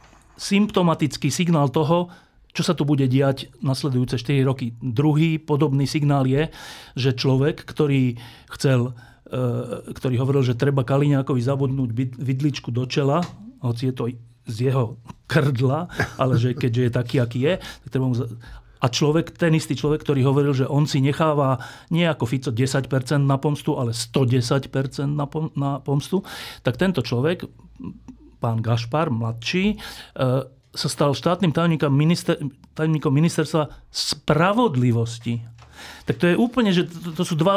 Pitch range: 130-160 Hz